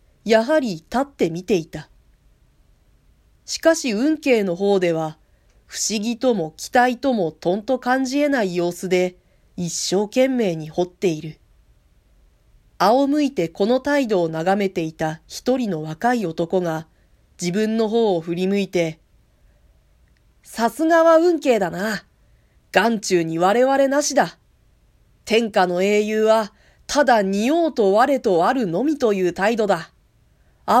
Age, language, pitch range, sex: 40-59, Japanese, 180-265 Hz, female